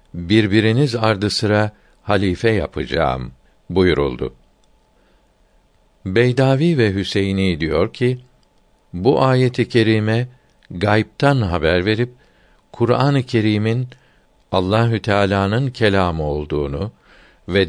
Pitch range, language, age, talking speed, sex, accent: 95-120 Hz, Turkish, 60-79, 80 wpm, male, native